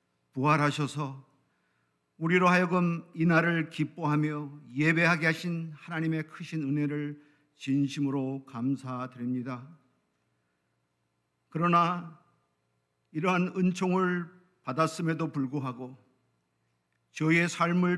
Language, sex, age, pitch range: Korean, male, 50-69, 135-180 Hz